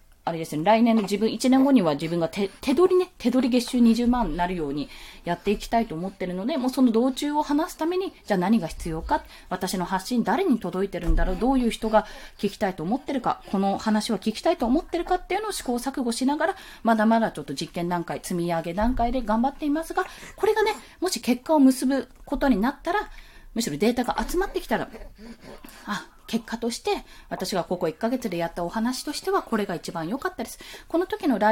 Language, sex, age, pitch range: Japanese, female, 20-39, 185-285 Hz